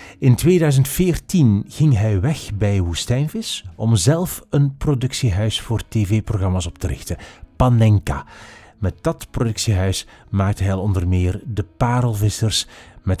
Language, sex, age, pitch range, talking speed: Dutch, male, 40-59, 100-135 Hz, 125 wpm